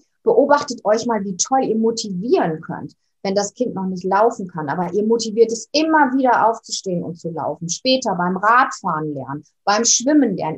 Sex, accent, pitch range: female, German, 195-270 Hz